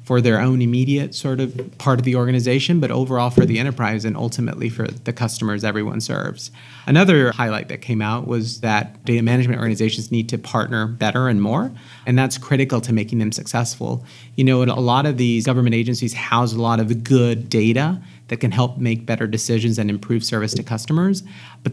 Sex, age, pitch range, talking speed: male, 40-59, 115-130 Hz, 195 wpm